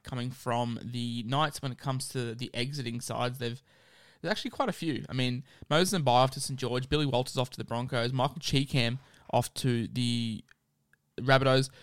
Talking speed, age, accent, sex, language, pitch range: 195 wpm, 20-39, Australian, male, English, 125-145 Hz